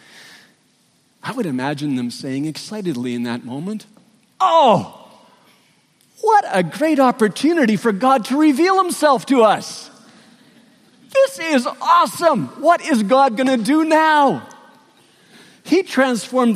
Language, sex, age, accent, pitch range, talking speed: English, male, 50-69, American, 155-255 Hz, 120 wpm